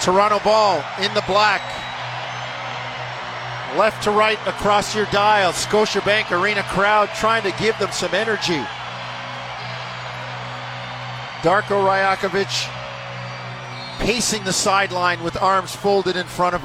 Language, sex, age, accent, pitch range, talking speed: English, male, 40-59, American, 155-200 Hz, 110 wpm